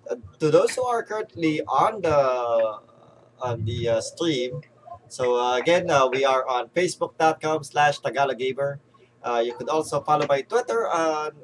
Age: 20-39